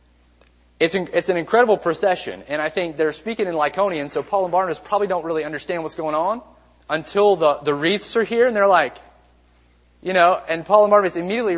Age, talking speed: 30-49, 200 wpm